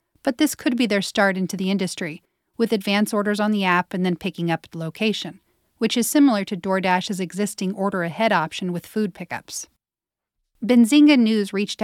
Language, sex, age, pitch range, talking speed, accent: English, female, 40-59, 180-215 Hz, 175 wpm, American